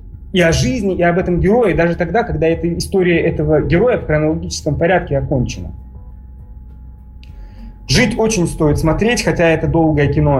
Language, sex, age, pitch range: Russian, male, 30-49, 130-195 Hz